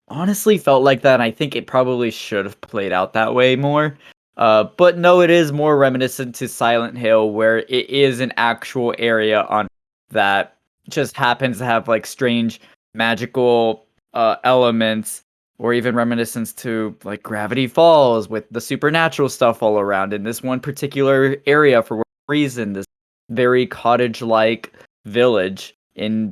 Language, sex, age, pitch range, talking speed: English, male, 10-29, 115-140 Hz, 160 wpm